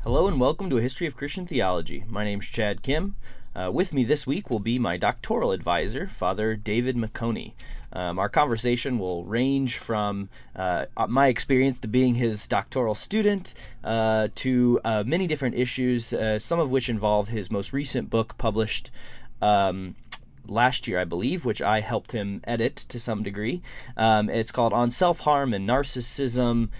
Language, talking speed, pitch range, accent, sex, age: English, 175 wpm, 105-125 Hz, American, male, 20-39